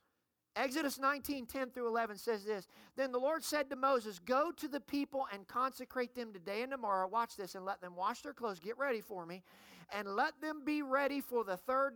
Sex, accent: male, American